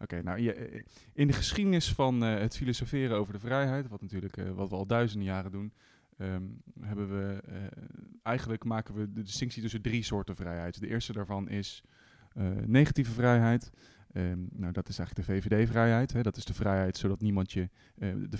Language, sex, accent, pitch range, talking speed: Dutch, male, Dutch, 100-125 Hz, 185 wpm